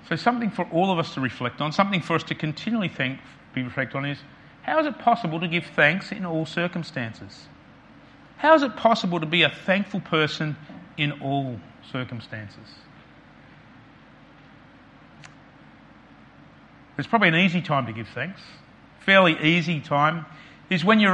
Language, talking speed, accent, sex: English, 155 wpm, Australian, male